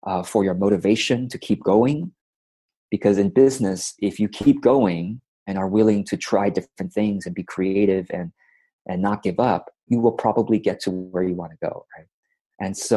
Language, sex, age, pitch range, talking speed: English, male, 30-49, 95-120 Hz, 195 wpm